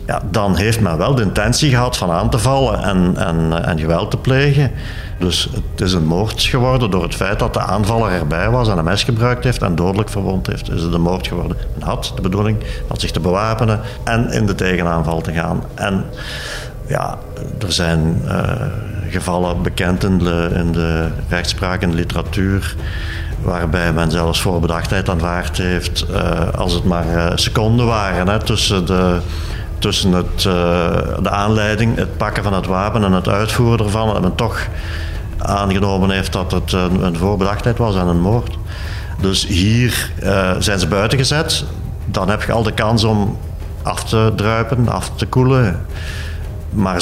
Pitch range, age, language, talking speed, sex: 85-105 Hz, 50-69, Dutch, 180 wpm, male